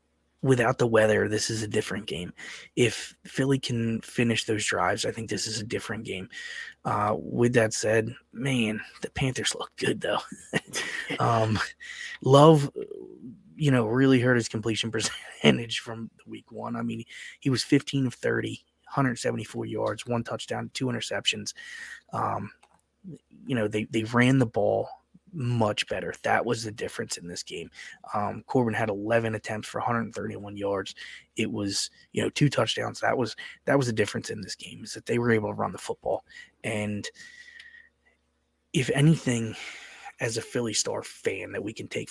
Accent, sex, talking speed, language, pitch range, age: American, male, 165 wpm, English, 110-130 Hz, 20-39